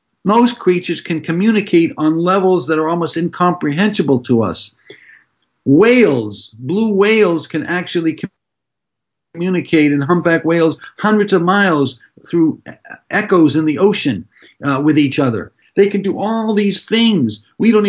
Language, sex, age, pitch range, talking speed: English, male, 50-69, 135-180 Hz, 140 wpm